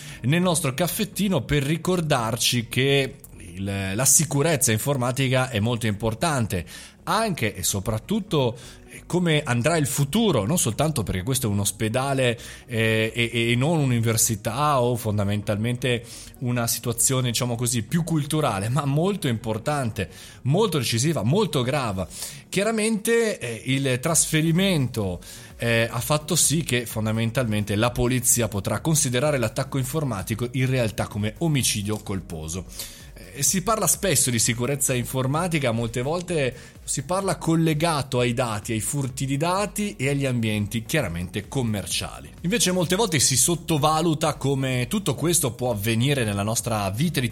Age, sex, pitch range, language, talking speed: 30-49, male, 115-150 Hz, Italian, 130 wpm